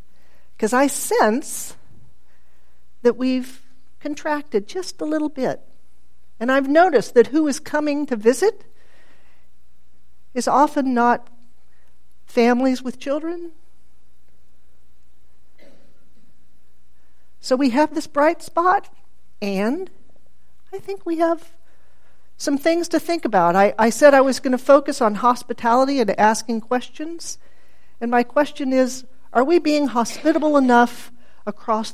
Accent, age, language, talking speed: American, 50-69, English, 120 wpm